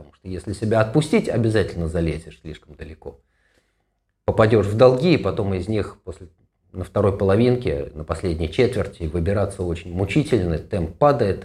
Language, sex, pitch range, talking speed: Russian, male, 85-125 Hz, 135 wpm